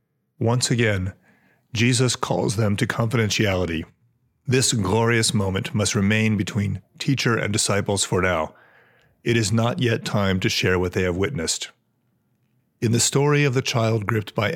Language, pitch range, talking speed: English, 95-120 Hz, 155 wpm